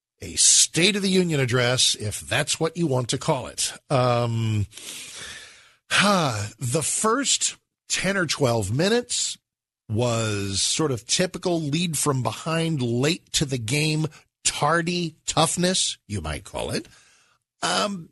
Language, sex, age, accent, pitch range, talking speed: English, male, 50-69, American, 125-175 Hz, 130 wpm